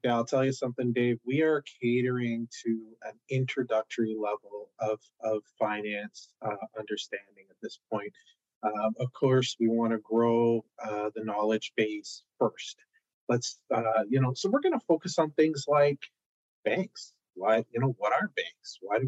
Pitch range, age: 120-180 Hz, 30-49